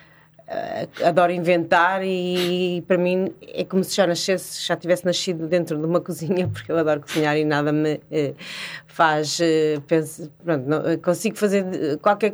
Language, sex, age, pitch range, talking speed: Portuguese, female, 30-49, 155-185 Hz, 150 wpm